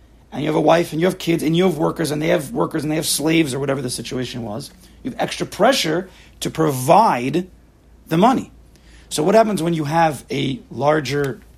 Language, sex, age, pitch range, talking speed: English, male, 40-59, 125-170 Hz, 220 wpm